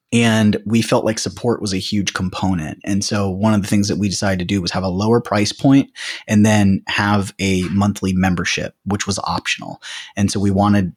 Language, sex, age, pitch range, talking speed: English, male, 20-39, 100-120 Hz, 215 wpm